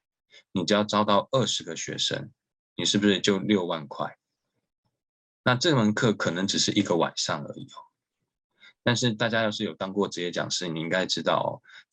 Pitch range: 90-110 Hz